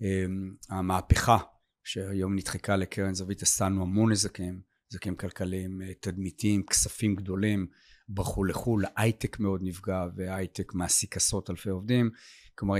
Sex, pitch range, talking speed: male, 95-110 Hz, 115 wpm